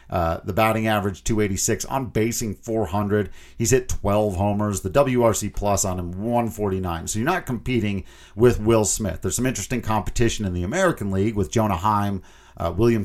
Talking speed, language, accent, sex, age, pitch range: 175 wpm, English, American, male, 40-59, 100-120 Hz